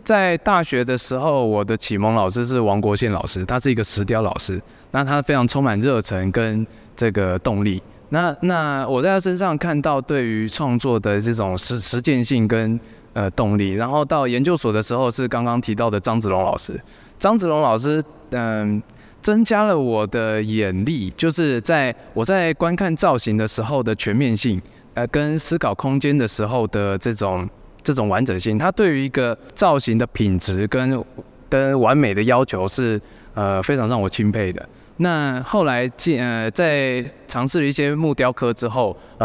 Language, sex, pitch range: Chinese, male, 105-140 Hz